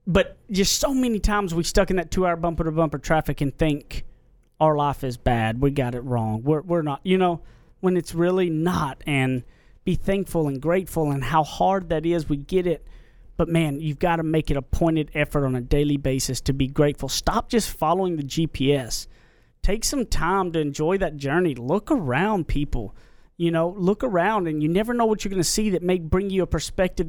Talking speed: 215 wpm